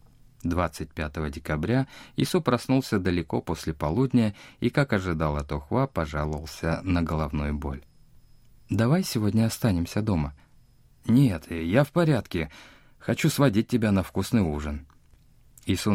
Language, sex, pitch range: Russian, male, 80-120 Hz